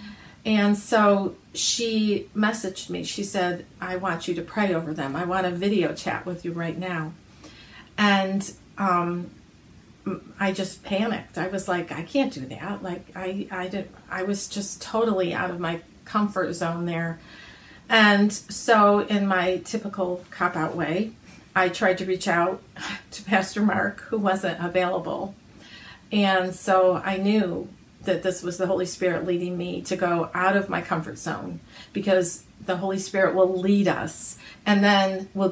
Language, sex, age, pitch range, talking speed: English, female, 40-59, 180-205 Hz, 160 wpm